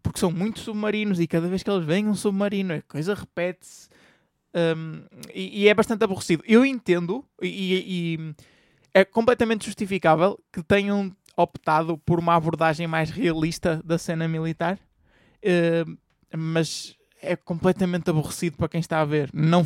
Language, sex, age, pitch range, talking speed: Portuguese, male, 20-39, 165-205 Hz, 155 wpm